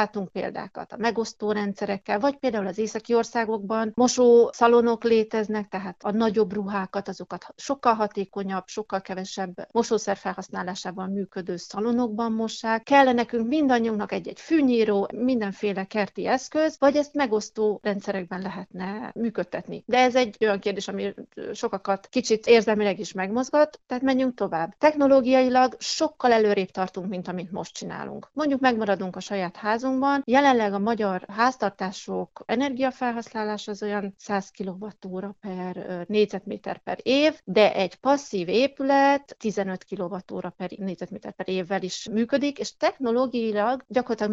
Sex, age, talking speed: female, 40-59, 125 wpm